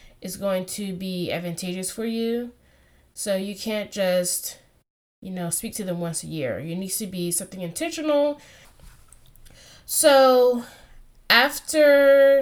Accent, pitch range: American, 180-220 Hz